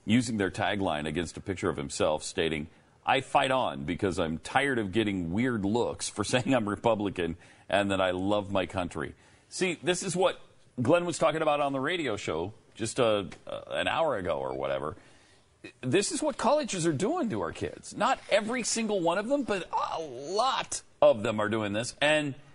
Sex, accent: male, American